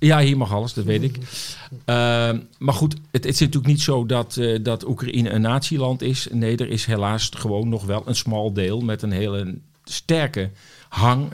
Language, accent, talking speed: Dutch, Dutch, 195 wpm